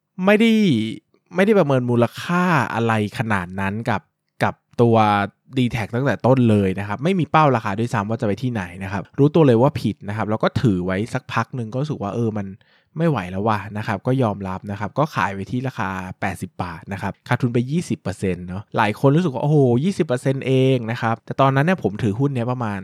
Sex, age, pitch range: male, 20-39, 105-135 Hz